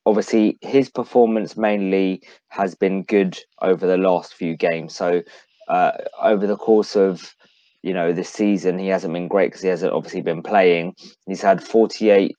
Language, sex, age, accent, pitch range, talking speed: English, male, 20-39, British, 90-110 Hz, 170 wpm